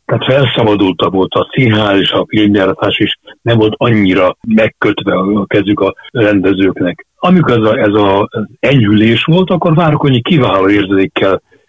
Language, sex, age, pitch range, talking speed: Hungarian, male, 60-79, 100-140 Hz, 130 wpm